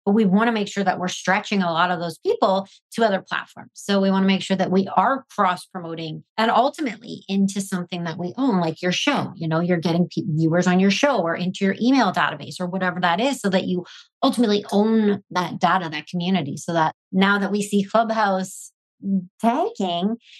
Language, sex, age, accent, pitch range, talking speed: English, female, 30-49, American, 180-225 Hz, 210 wpm